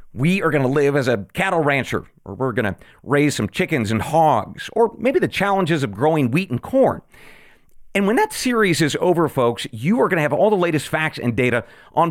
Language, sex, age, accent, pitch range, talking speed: English, male, 40-59, American, 120-190 Hz, 230 wpm